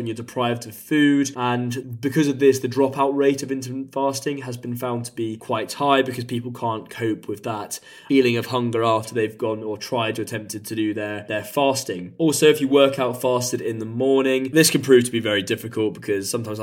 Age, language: 20-39, English